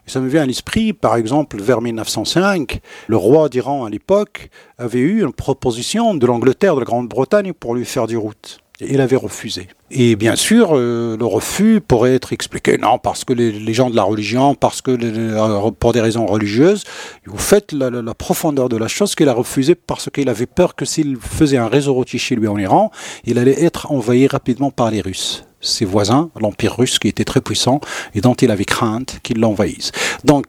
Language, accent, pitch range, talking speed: French, French, 120-160 Hz, 210 wpm